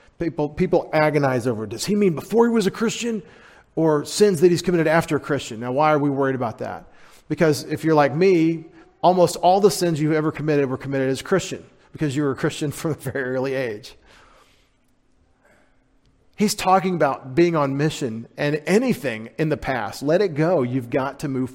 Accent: American